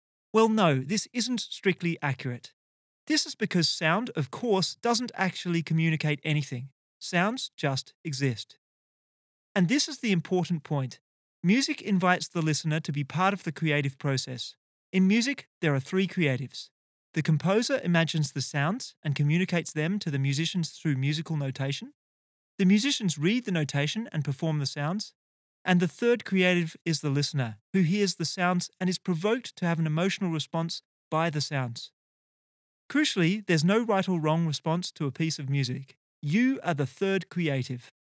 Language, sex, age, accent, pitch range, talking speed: English, male, 30-49, Australian, 145-195 Hz, 165 wpm